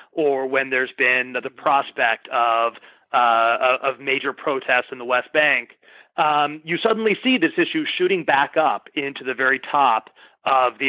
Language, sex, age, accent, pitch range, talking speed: English, male, 30-49, American, 125-160 Hz, 165 wpm